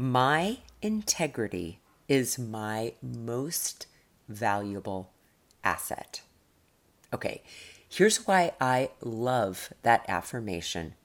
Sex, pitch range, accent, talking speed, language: female, 115-155 Hz, American, 75 wpm, English